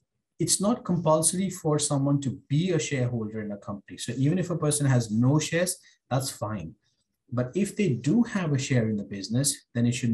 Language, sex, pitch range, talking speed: English, male, 110-130 Hz, 205 wpm